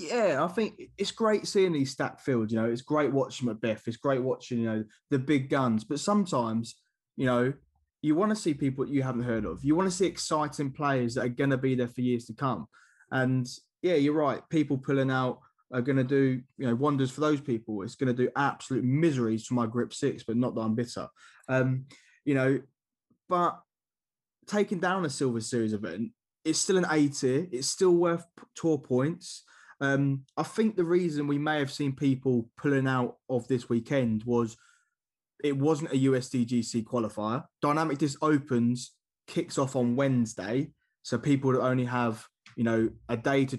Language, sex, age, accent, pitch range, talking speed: English, male, 20-39, British, 120-150 Hz, 195 wpm